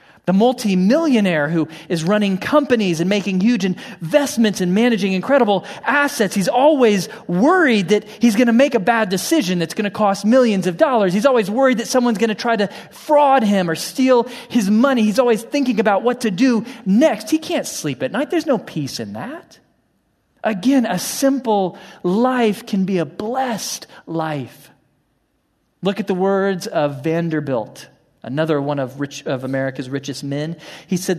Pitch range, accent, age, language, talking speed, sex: 150-225 Hz, American, 40-59, English, 170 wpm, male